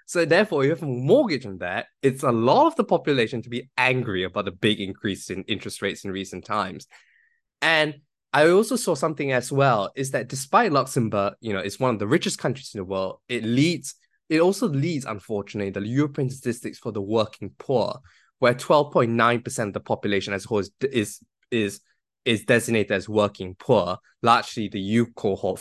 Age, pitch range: 10-29, 105-135 Hz